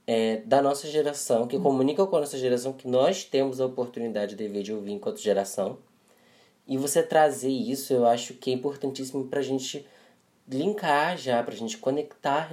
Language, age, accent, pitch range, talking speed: Portuguese, 10-29, Brazilian, 115-160 Hz, 175 wpm